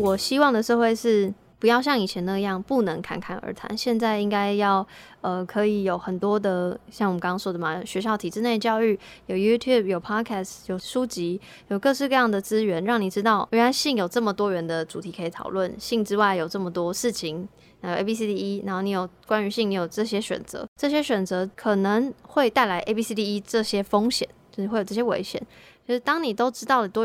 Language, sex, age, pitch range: Chinese, female, 20-39, 190-225 Hz